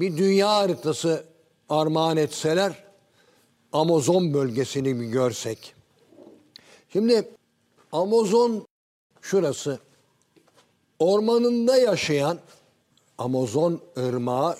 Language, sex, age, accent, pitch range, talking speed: Turkish, male, 60-79, native, 120-170 Hz, 65 wpm